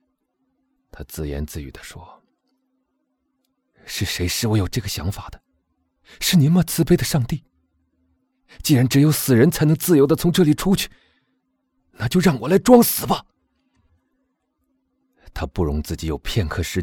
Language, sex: Chinese, male